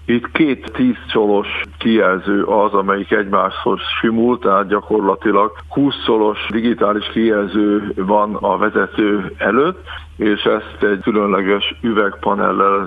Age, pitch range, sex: 60-79, 100-110 Hz, male